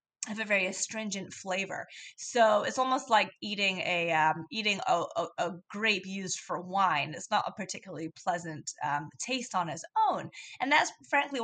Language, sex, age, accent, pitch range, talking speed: English, female, 20-39, American, 175-215 Hz, 175 wpm